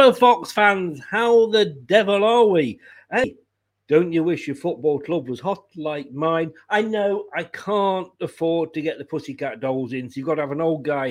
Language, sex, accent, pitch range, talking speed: English, male, British, 145-195 Hz, 205 wpm